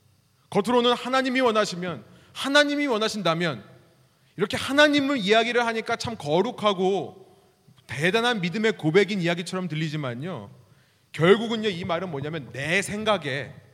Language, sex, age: Korean, male, 30-49